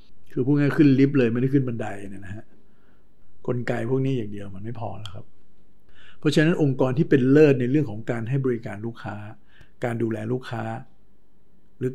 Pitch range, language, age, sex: 110-135 Hz, Thai, 60-79, male